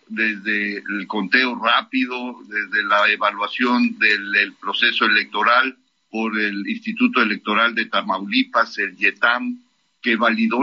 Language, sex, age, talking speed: Spanish, male, 50-69, 115 wpm